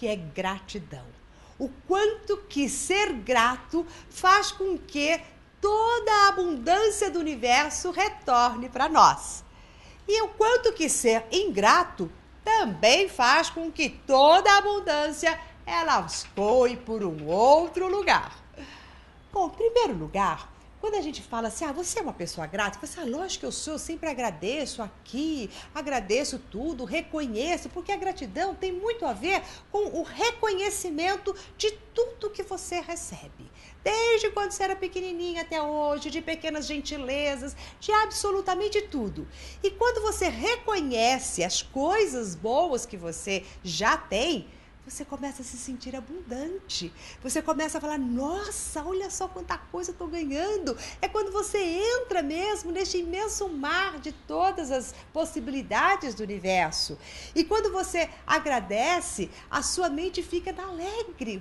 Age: 50-69